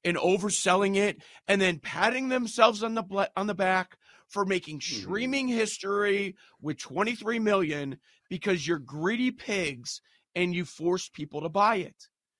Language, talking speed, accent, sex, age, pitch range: English, 145 wpm, American, male, 40-59, 150-200 Hz